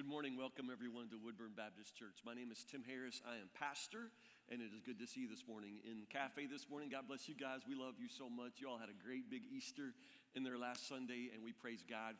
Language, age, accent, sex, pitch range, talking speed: English, 50-69, American, male, 130-195 Hz, 260 wpm